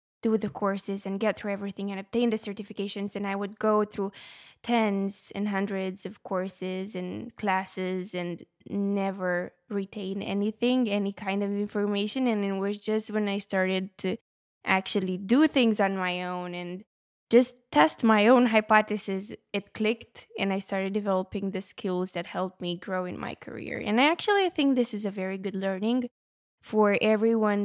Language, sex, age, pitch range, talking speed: English, female, 20-39, 195-230 Hz, 170 wpm